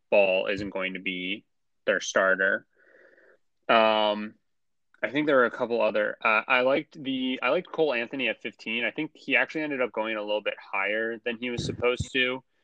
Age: 20-39